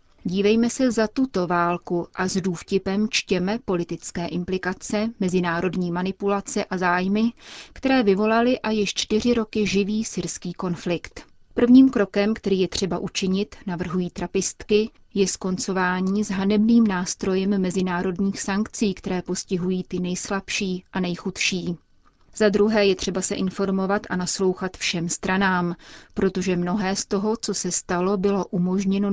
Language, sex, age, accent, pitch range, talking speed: Czech, female, 30-49, native, 180-215 Hz, 130 wpm